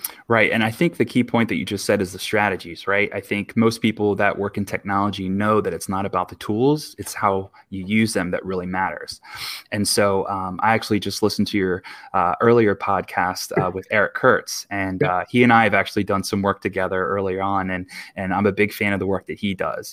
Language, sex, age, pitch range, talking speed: English, male, 20-39, 95-110 Hz, 240 wpm